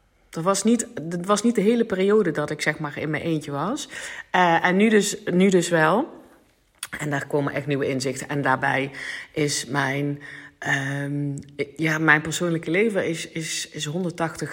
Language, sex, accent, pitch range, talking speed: Dutch, female, Dutch, 145-190 Hz, 170 wpm